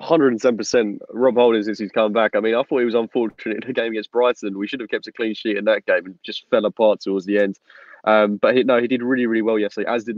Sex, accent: male, British